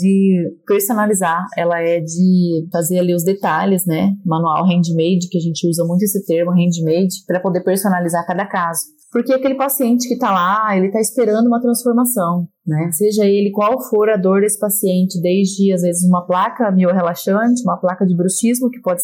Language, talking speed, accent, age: Portuguese, 180 wpm, Brazilian, 30-49